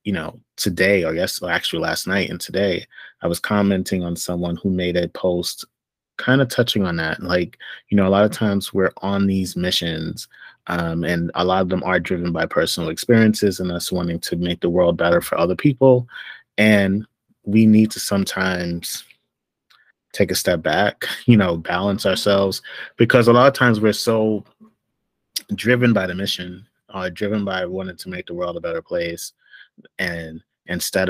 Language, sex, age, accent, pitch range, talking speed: English, male, 30-49, American, 90-105 Hz, 185 wpm